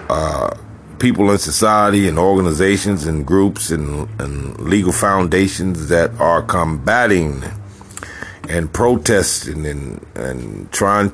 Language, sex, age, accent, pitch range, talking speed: English, male, 50-69, American, 80-100 Hz, 110 wpm